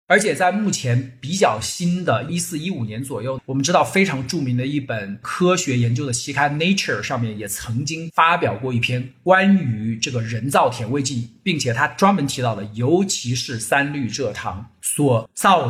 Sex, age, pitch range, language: male, 50-69, 120-165 Hz, Chinese